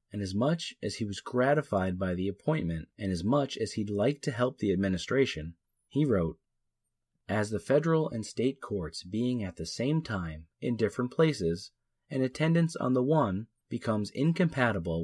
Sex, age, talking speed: male, 30-49, 170 wpm